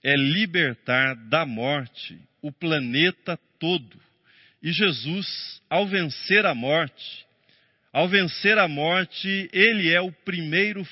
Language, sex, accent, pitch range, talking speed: Portuguese, male, Brazilian, 140-190 Hz, 115 wpm